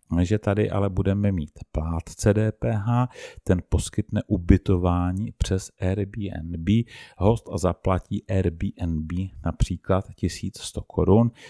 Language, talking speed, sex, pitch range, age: Czech, 95 wpm, male, 85-100 Hz, 40-59